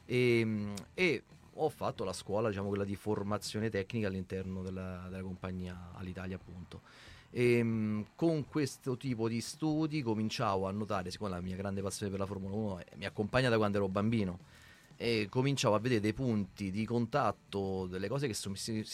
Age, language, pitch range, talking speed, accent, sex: 30-49, Italian, 100-120 Hz, 170 wpm, native, male